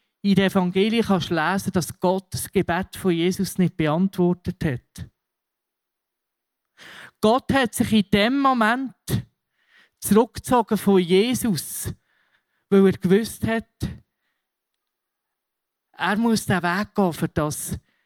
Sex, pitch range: male, 185-225 Hz